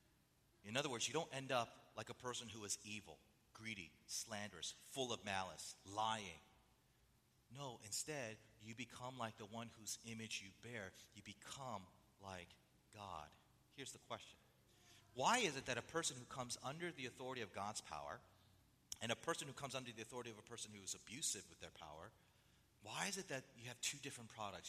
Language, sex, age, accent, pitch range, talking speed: English, male, 30-49, American, 105-155 Hz, 185 wpm